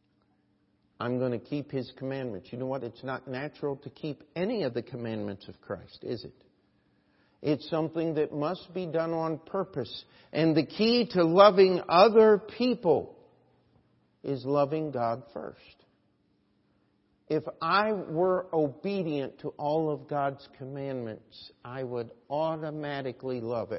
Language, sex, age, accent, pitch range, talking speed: English, male, 60-79, American, 120-170 Hz, 135 wpm